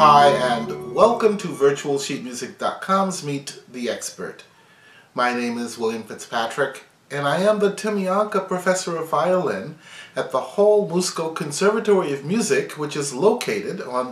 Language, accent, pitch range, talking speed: English, American, 135-200 Hz, 135 wpm